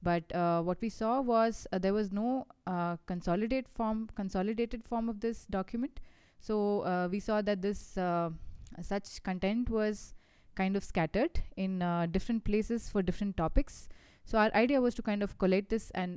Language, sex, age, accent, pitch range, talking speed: English, female, 20-39, Indian, 175-215 Hz, 180 wpm